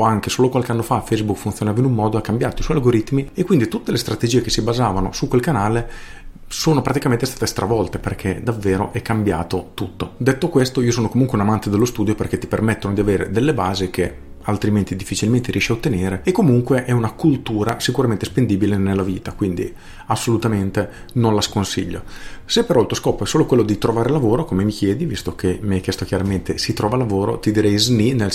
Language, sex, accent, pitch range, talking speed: Italian, male, native, 100-120 Hz, 205 wpm